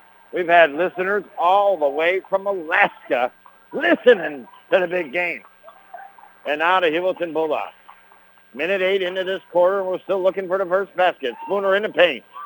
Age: 60-79